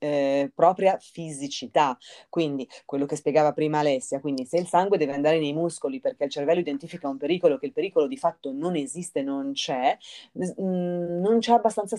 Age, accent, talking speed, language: 30-49, native, 175 wpm, Italian